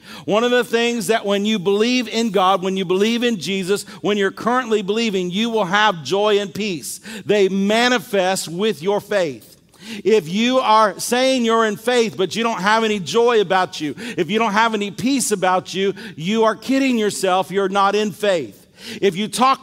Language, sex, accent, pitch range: English, male, American, 200-235 Hz